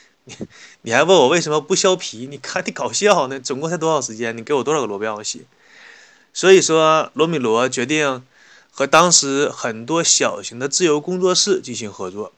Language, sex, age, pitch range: Chinese, male, 20-39, 125-165 Hz